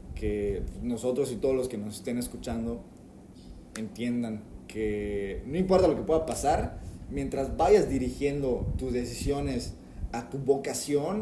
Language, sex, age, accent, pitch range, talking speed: Spanish, male, 20-39, Mexican, 95-130 Hz, 135 wpm